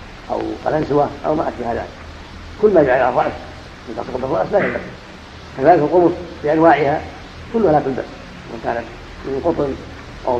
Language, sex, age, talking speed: Arabic, female, 50-69, 145 wpm